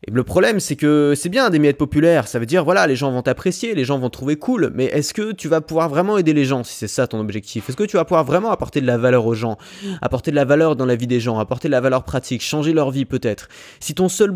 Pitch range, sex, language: 130-185 Hz, male, French